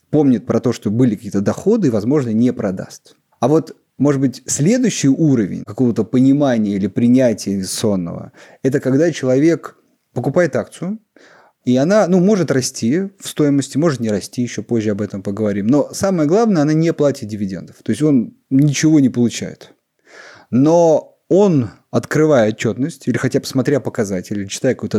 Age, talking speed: 30-49, 160 wpm